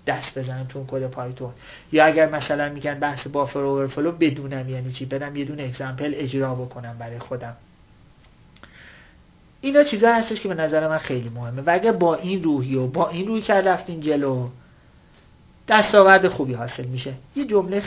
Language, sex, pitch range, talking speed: Persian, male, 130-170 Hz, 160 wpm